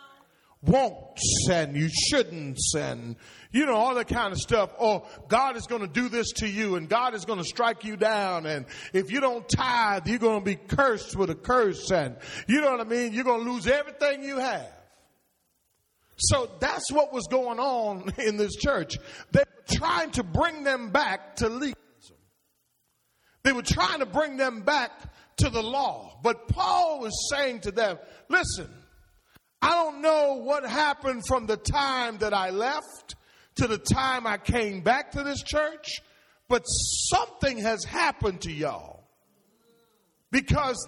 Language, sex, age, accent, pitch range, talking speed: English, male, 40-59, American, 215-280 Hz, 170 wpm